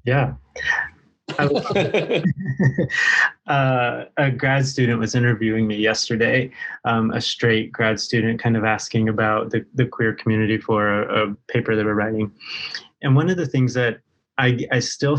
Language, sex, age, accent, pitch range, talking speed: English, male, 20-39, American, 110-130 Hz, 155 wpm